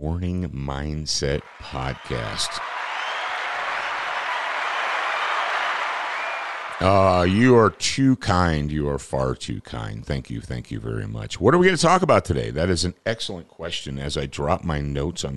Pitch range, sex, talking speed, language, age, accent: 75-105 Hz, male, 150 wpm, English, 50-69, American